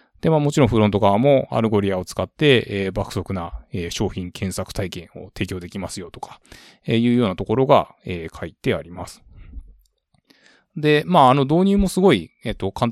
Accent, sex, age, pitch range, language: native, male, 20-39, 95-120 Hz, Japanese